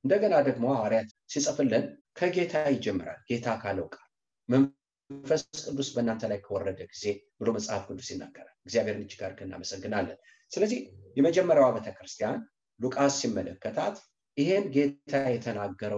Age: 50-69